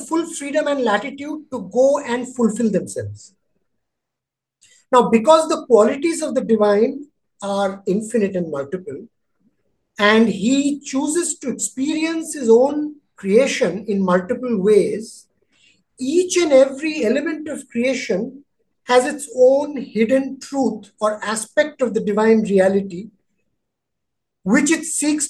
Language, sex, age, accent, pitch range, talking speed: English, male, 50-69, Indian, 220-285 Hz, 120 wpm